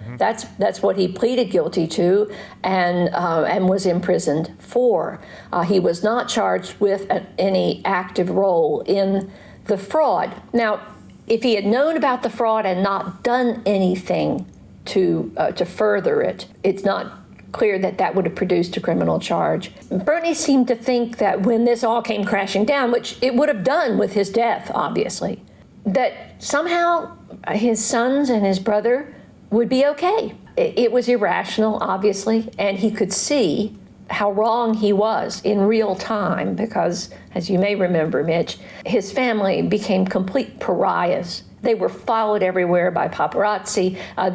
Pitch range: 185-235 Hz